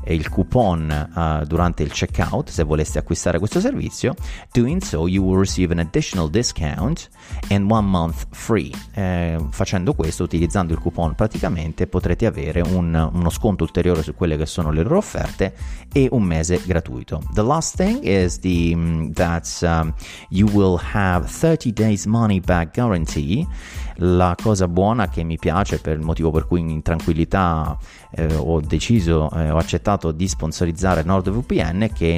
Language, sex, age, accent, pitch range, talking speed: Italian, male, 30-49, native, 80-95 Hz, 165 wpm